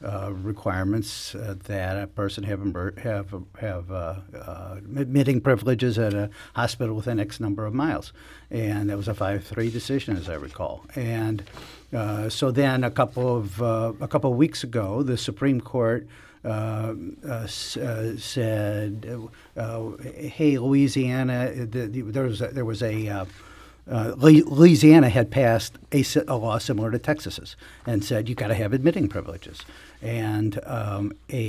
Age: 60-79